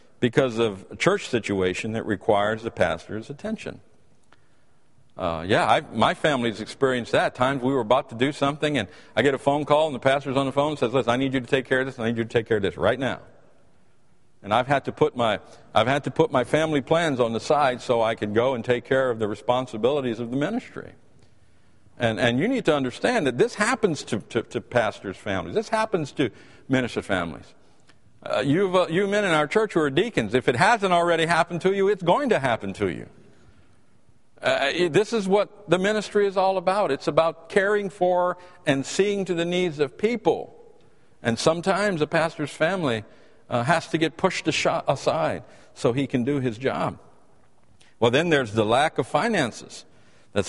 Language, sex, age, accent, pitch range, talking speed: English, male, 50-69, American, 120-180 Hz, 210 wpm